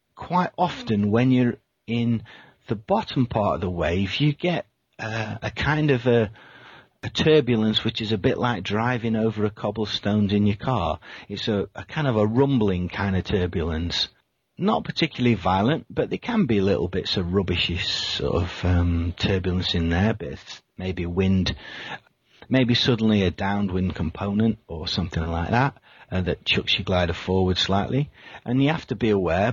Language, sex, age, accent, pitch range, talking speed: English, male, 40-59, British, 90-120 Hz, 165 wpm